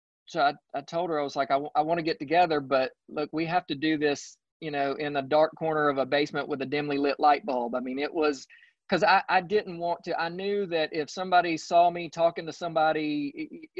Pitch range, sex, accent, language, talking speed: 135-165 Hz, male, American, English, 250 wpm